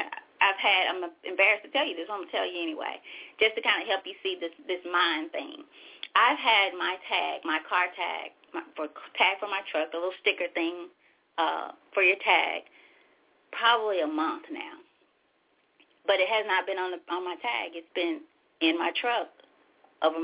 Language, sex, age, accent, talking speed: English, female, 30-49, American, 200 wpm